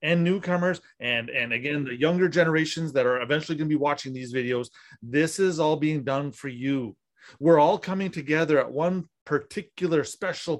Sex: male